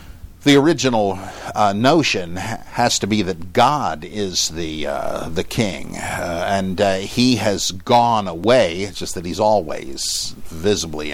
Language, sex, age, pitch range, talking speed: English, male, 60-79, 95-120 Hz, 145 wpm